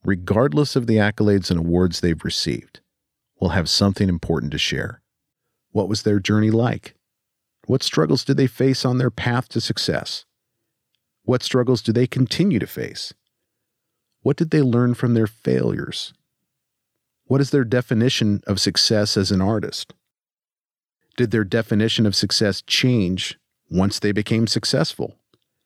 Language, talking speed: English, 145 wpm